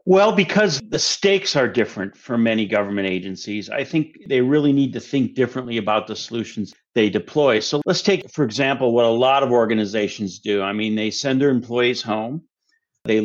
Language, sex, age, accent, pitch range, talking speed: English, male, 50-69, American, 115-155 Hz, 190 wpm